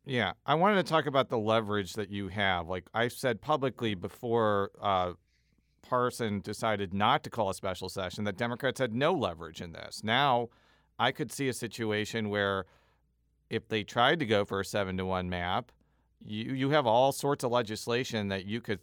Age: 40-59